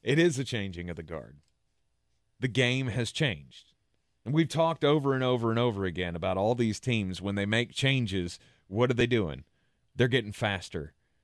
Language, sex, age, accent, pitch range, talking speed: English, male, 30-49, American, 95-130 Hz, 185 wpm